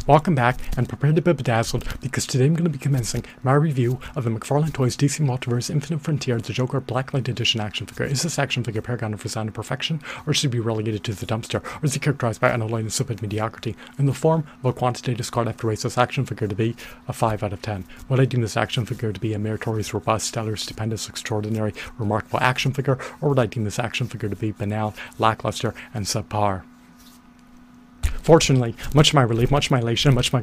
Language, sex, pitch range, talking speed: English, male, 110-135 Hz, 230 wpm